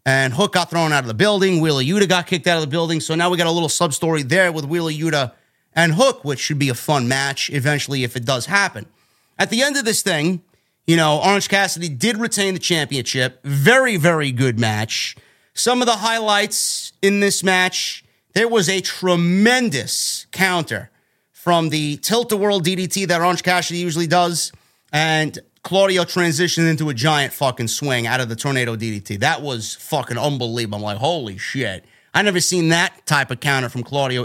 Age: 30-49